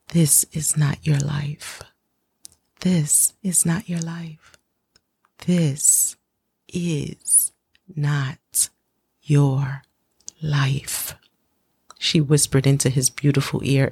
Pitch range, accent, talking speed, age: 140-175 Hz, American, 90 wpm, 30-49